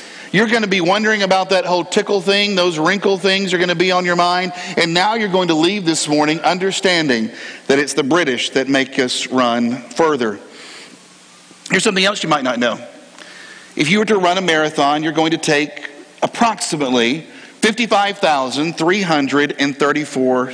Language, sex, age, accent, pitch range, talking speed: English, male, 50-69, American, 140-195 Hz, 170 wpm